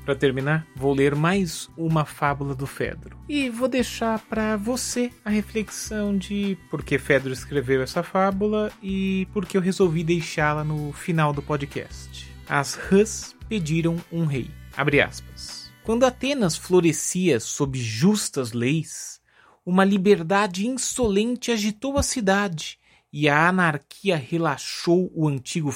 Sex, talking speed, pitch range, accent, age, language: male, 135 wpm, 145-210 Hz, Brazilian, 30-49, Portuguese